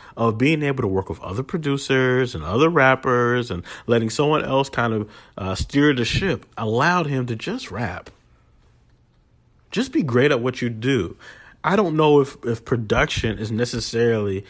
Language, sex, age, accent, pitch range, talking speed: English, male, 30-49, American, 120-175 Hz, 170 wpm